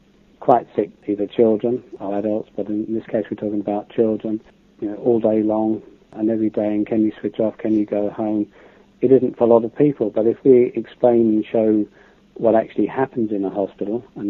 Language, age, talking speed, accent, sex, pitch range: English, 40-59, 215 wpm, British, male, 105-120 Hz